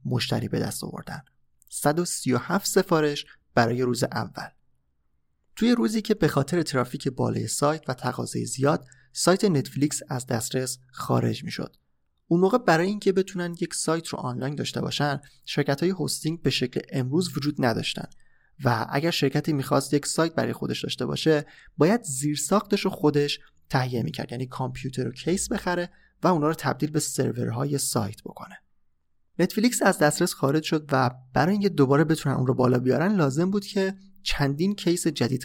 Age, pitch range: 30-49, 130-175 Hz